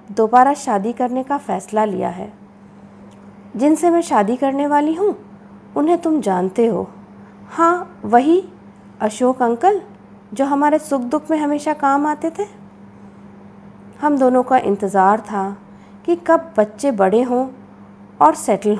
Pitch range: 210-300 Hz